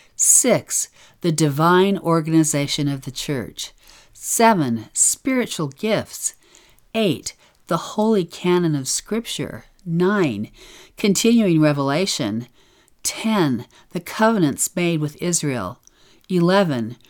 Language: English